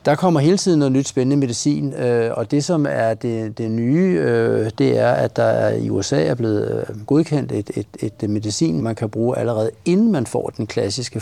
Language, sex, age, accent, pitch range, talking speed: Danish, male, 60-79, native, 110-135 Hz, 200 wpm